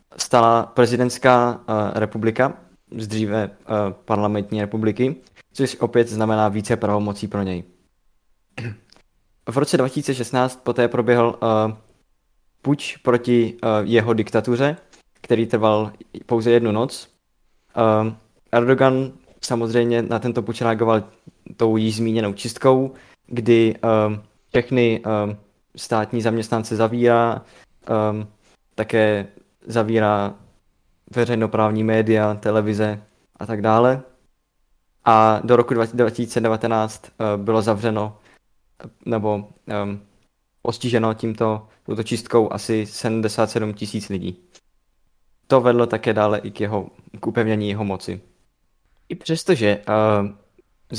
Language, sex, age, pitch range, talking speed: Czech, male, 20-39, 105-120 Hz, 105 wpm